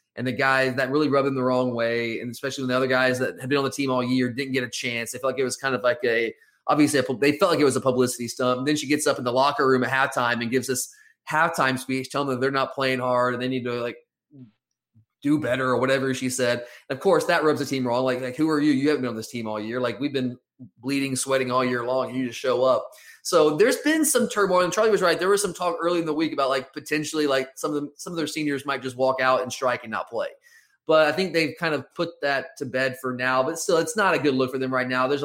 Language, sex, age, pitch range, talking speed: English, male, 30-49, 130-150 Hz, 300 wpm